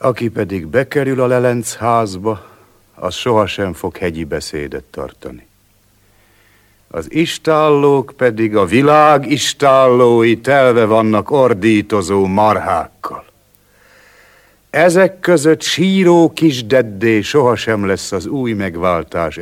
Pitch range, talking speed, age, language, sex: 95-130 Hz, 100 wpm, 60-79, Hungarian, male